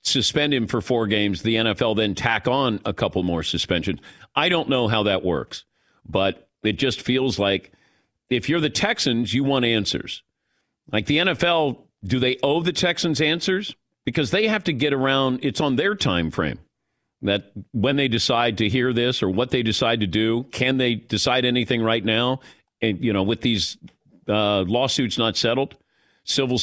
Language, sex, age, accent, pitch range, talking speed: English, male, 50-69, American, 105-140 Hz, 185 wpm